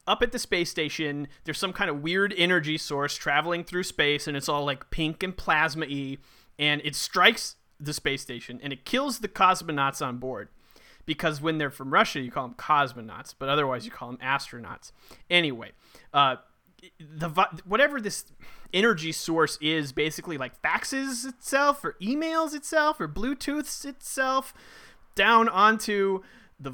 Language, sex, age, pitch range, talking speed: English, male, 30-49, 145-195 Hz, 160 wpm